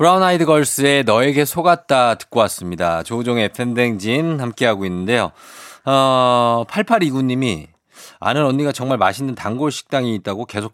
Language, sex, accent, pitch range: Korean, male, native, 100-140 Hz